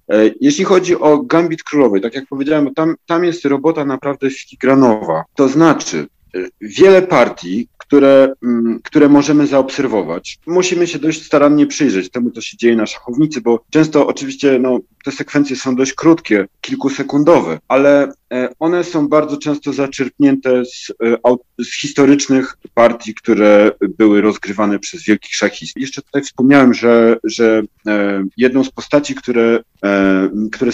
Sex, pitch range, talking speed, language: male, 120-150 Hz, 135 wpm, Polish